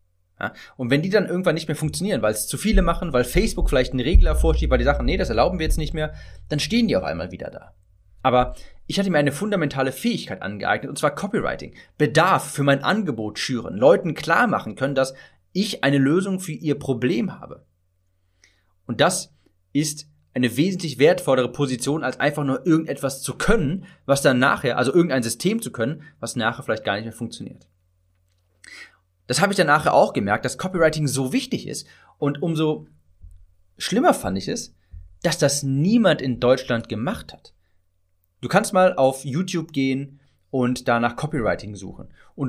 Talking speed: 180 wpm